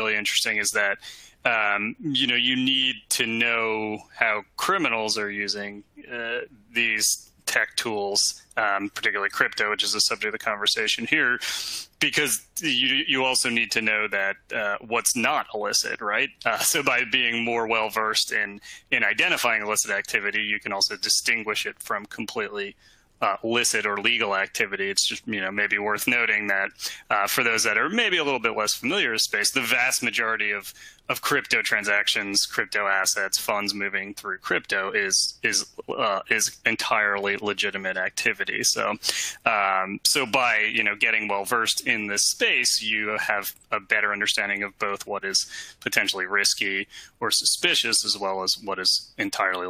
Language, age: English, 30-49